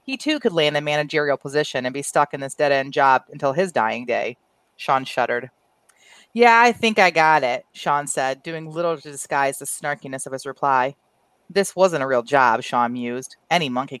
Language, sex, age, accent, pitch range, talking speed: English, female, 30-49, American, 140-180 Hz, 200 wpm